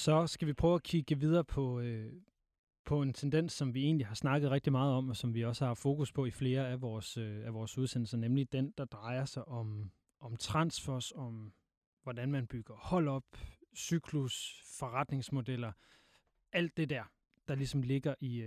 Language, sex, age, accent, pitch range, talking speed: Danish, male, 30-49, native, 125-155 Hz, 180 wpm